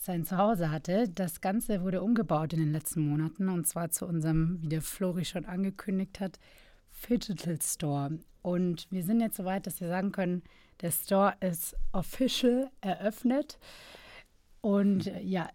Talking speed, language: 155 wpm, German